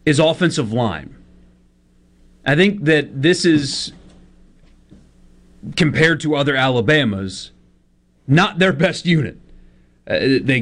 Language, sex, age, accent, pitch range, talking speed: English, male, 30-49, American, 110-155 Hz, 100 wpm